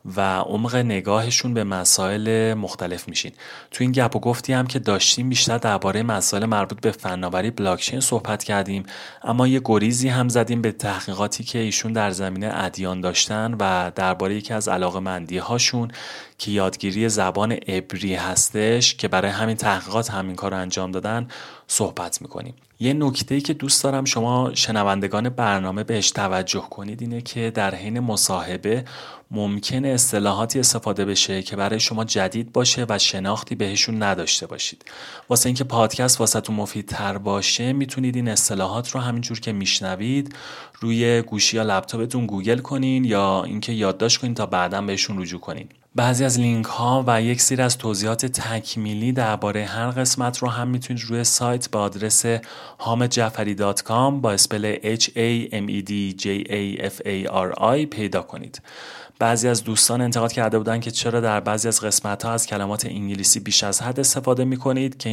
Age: 30-49